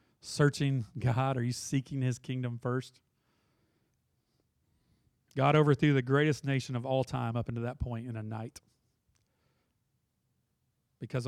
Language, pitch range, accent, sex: English, 115-130 Hz, American, male